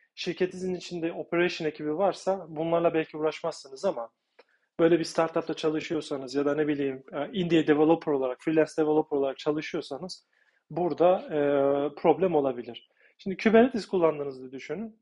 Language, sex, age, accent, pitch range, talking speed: Turkish, male, 40-59, native, 150-180 Hz, 130 wpm